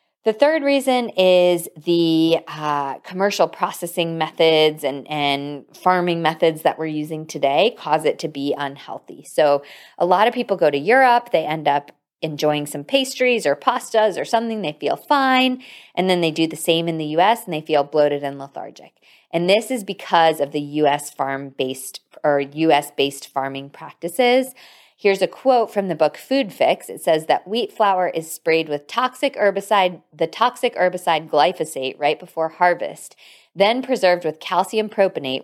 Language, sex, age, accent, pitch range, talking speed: English, female, 20-39, American, 145-185 Hz, 170 wpm